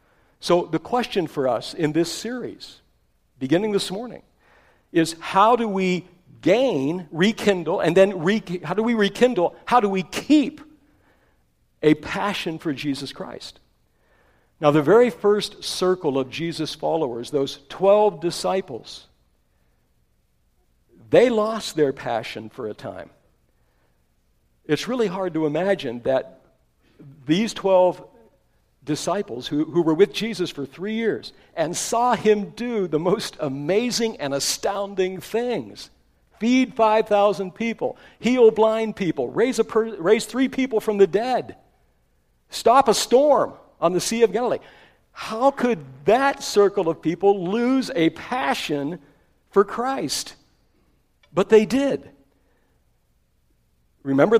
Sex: male